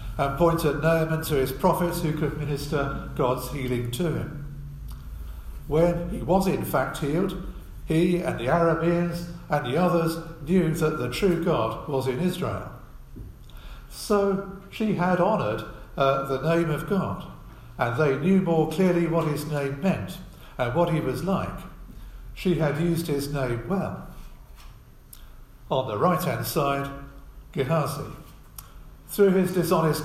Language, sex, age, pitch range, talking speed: English, male, 50-69, 135-175 Hz, 140 wpm